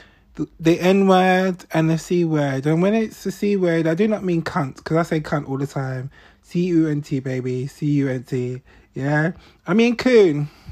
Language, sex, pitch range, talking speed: English, male, 145-195 Hz, 185 wpm